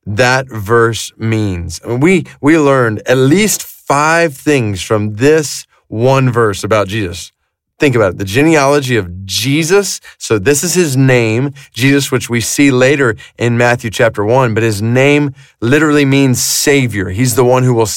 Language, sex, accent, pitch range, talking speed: English, male, American, 110-140 Hz, 160 wpm